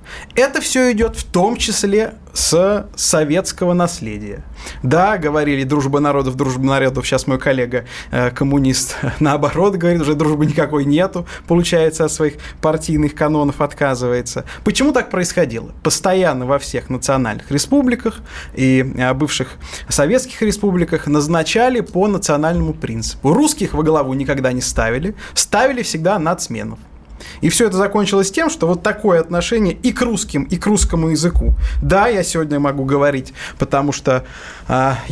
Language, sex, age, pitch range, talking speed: Russian, male, 20-39, 140-180 Hz, 140 wpm